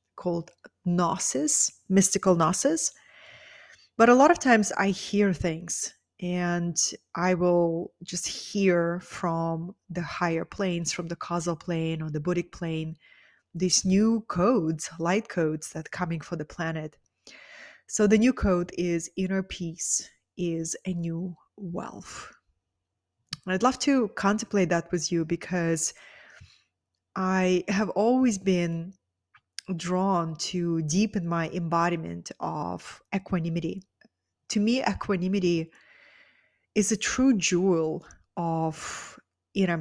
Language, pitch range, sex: English, 165-195 Hz, female